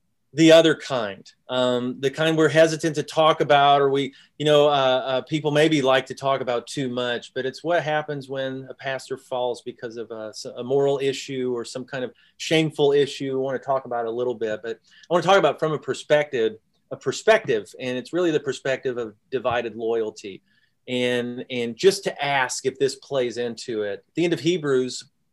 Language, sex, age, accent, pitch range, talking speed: English, male, 30-49, American, 125-150 Hz, 210 wpm